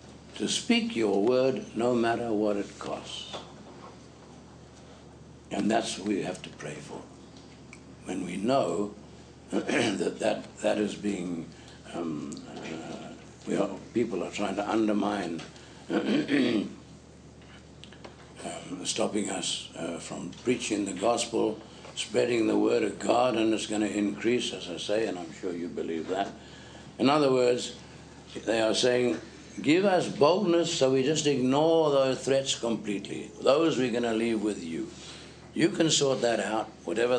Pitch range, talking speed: 100-125 Hz, 145 wpm